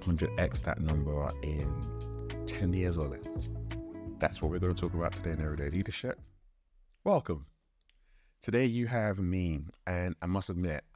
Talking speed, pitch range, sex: 160 wpm, 75-90 Hz, male